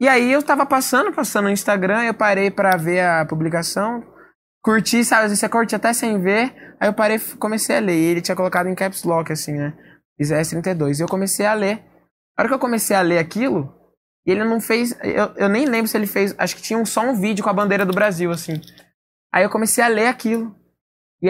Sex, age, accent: male, 10-29, Brazilian